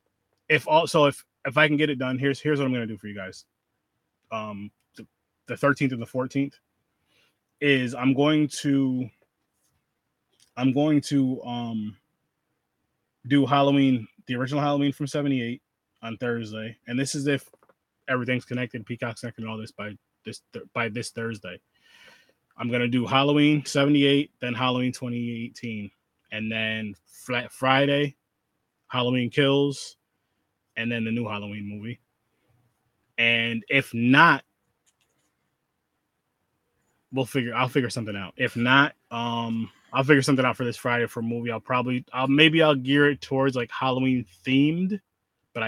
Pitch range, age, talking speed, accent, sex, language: 115-140 Hz, 20-39, 150 wpm, American, male, English